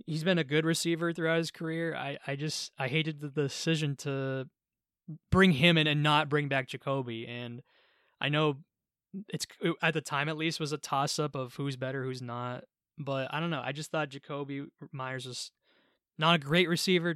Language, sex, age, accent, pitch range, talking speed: English, male, 20-39, American, 135-160 Hz, 195 wpm